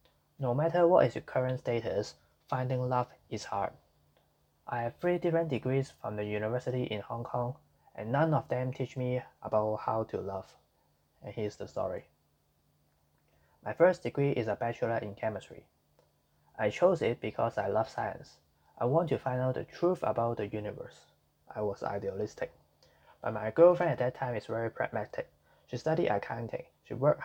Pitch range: 105-130 Hz